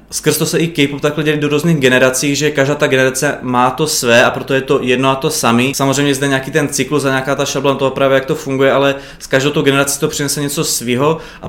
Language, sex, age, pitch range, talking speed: Czech, male, 20-39, 135-145 Hz, 255 wpm